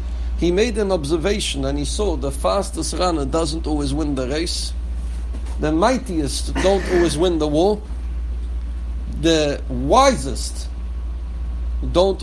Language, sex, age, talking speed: English, male, 60-79, 125 wpm